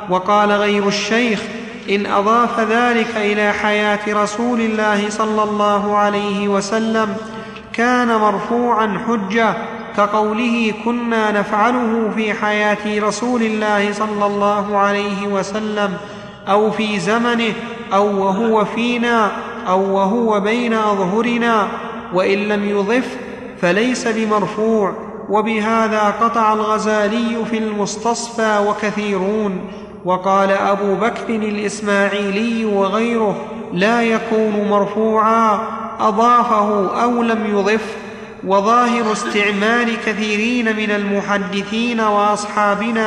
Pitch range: 205-225 Hz